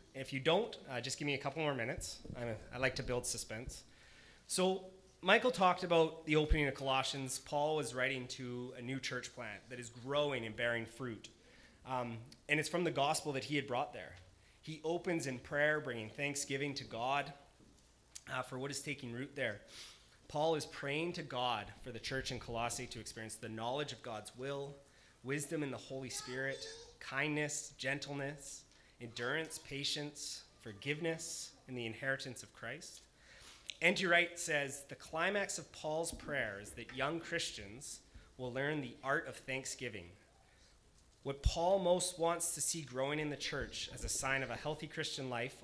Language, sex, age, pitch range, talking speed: English, male, 30-49, 120-150 Hz, 175 wpm